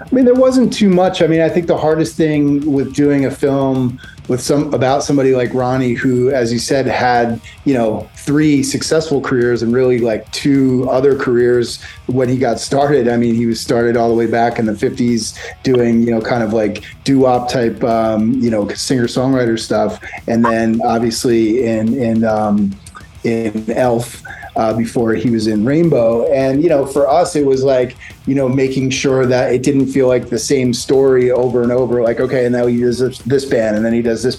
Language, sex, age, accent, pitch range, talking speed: English, male, 30-49, American, 115-135 Hz, 210 wpm